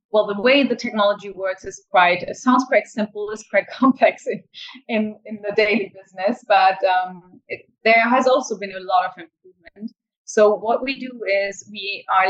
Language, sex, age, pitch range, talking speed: English, female, 20-39, 190-245 Hz, 190 wpm